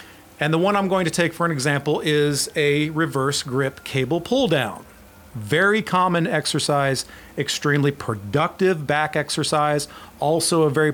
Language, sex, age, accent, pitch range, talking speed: English, male, 40-59, American, 125-170 Hz, 150 wpm